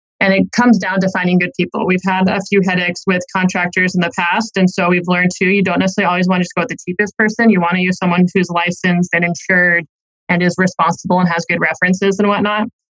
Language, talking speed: English, 245 wpm